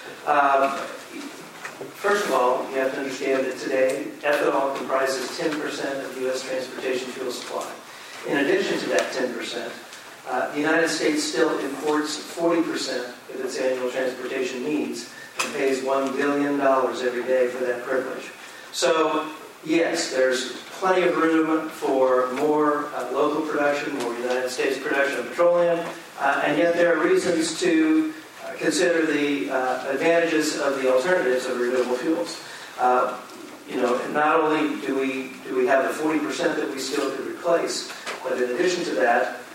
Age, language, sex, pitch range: 50-69, English, male, 125-155 Hz